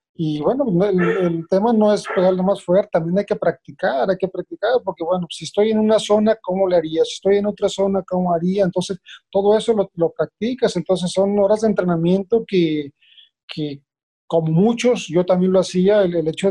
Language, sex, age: Spanish, male, 40-59